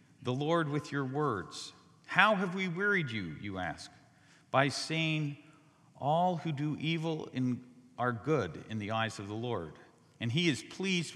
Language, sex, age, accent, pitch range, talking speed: English, male, 50-69, American, 125-165 Hz, 160 wpm